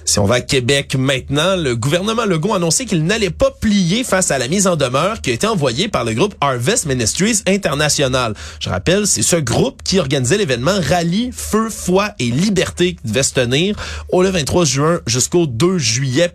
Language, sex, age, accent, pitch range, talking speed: French, male, 30-49, Canadian, 125-180 Hz, 200 wpm